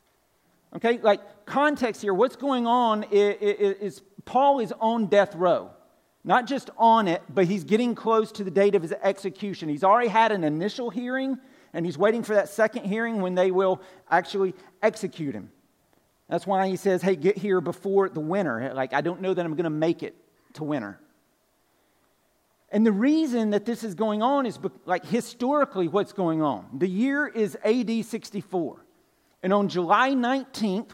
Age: 50-69